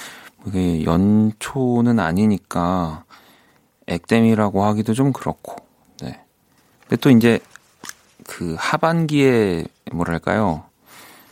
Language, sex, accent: Korean, male, native